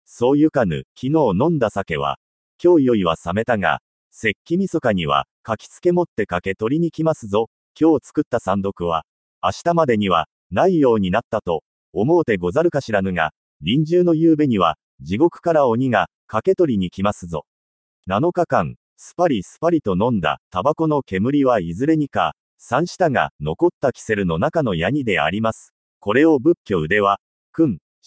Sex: male